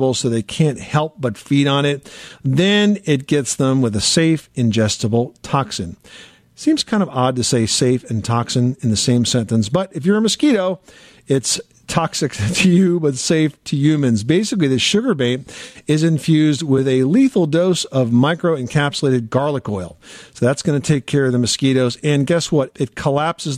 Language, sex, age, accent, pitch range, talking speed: English, male, 50-69, American, 125-155 Hz, 180 wpm